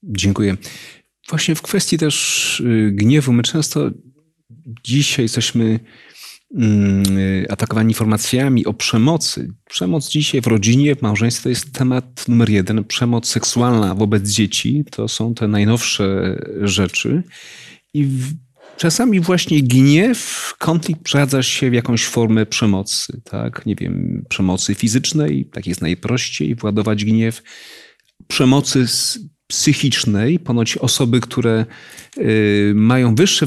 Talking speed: 120 wpm